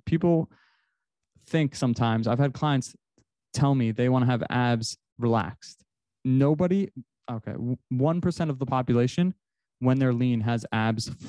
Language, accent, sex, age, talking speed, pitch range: English, American, male, 20-39, 135 wpm, 115-140 Hz